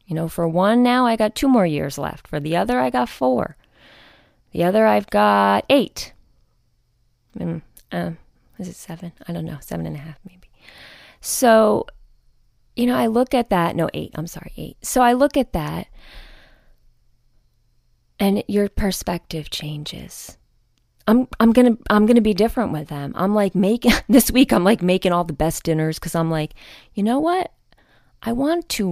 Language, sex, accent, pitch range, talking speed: English, female, American, 145-225 Hz, 185 wpm